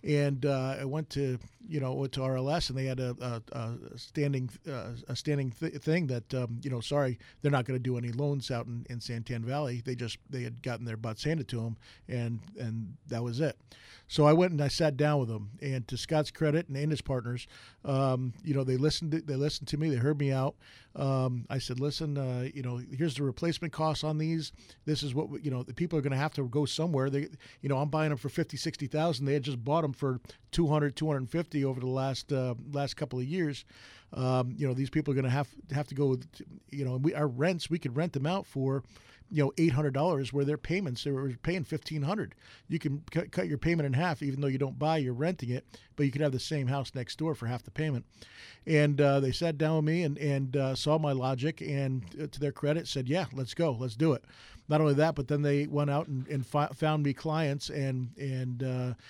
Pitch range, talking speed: 130-150 Hz, 250 wpm